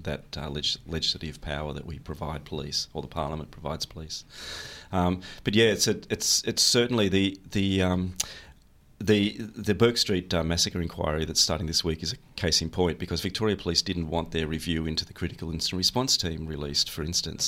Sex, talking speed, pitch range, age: male, 195 wpm, 80-90 Hz, 30-49